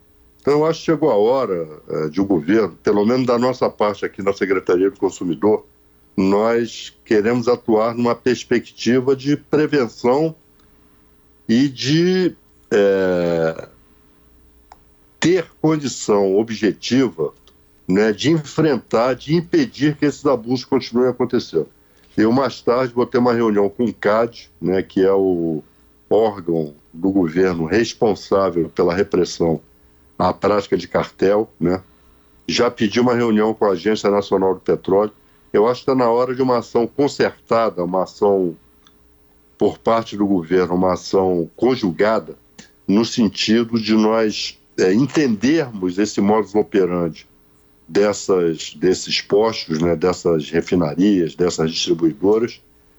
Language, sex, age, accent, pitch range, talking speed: Portuguese, male, 60-79, Brazilian, 85-125 Hz, 130 wpm